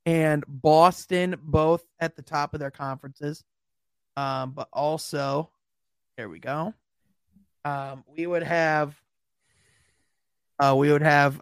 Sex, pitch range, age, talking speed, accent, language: male, 145-185 Hz, 30-49, 120 wpm, American, English